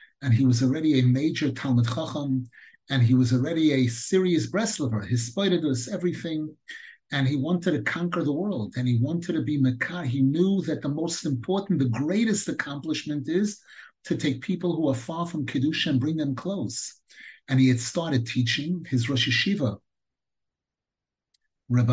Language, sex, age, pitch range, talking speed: English, male, 50-69, 130-180 Hz, 170 wpm